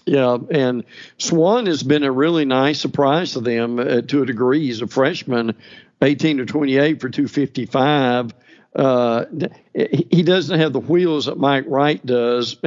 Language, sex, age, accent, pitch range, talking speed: English, male, 50-69, American, 130-155 Hz, 155 wpm